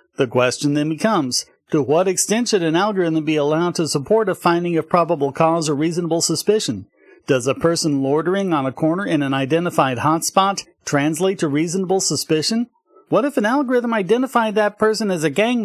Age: 40-59